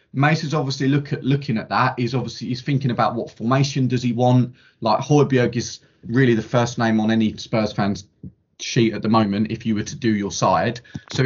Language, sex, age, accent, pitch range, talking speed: English, male, 20-39, British, 115-140 Hz, 215 wpm